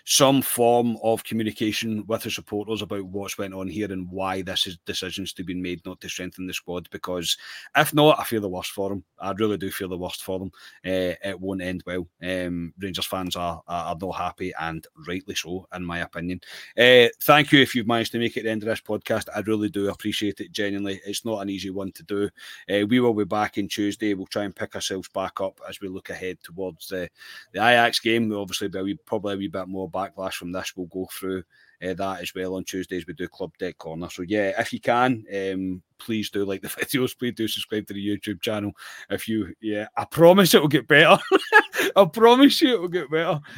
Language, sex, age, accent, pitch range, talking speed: English, male, 30-49, British, 95-115 Hz, 235 wpm